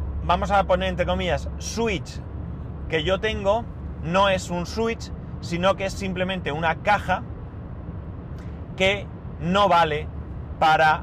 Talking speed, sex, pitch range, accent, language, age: 125 wpm, male, 115-180 Hz, Spanish, Spanish, 30-49